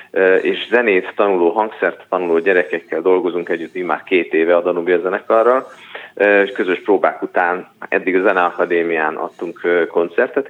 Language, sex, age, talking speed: Hungarian, male, 30-49, 125 wpm